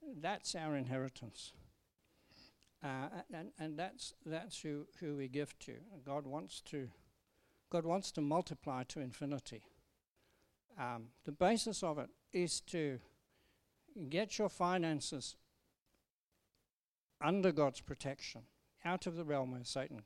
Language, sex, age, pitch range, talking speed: English, male, 60-79, 130-170 Hz, 125 wpm